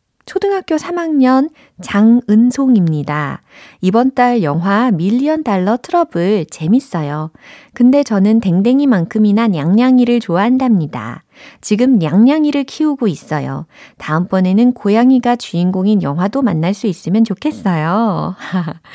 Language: Korean